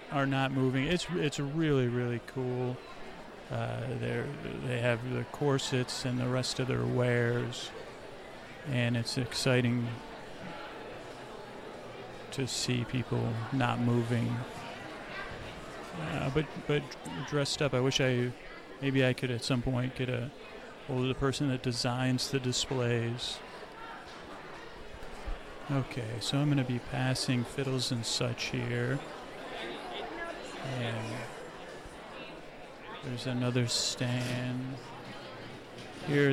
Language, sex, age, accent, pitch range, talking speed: English, male, 40-59, American, 125-145 Hz, 110 wpm